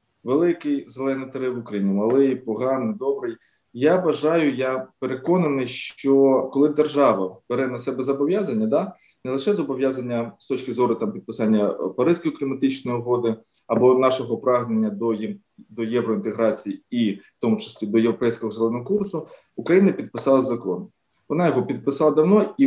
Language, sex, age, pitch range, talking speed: Ukrainian, male, 20-39, 120-155 Hz, 140 wpm